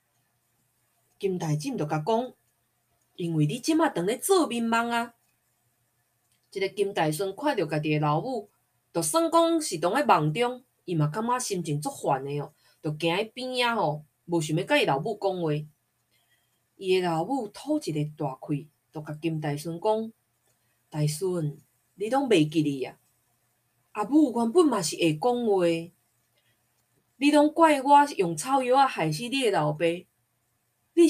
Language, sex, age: Chinese, female, 20-39